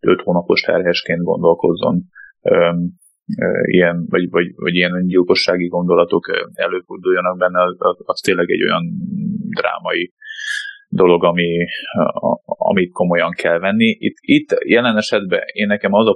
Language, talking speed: Hungarian, 135 wpm